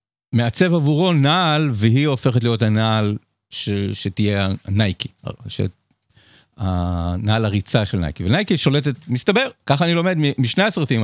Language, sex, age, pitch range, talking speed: Hebrew, male, 50-69, 105-150 Hz, 125 wpm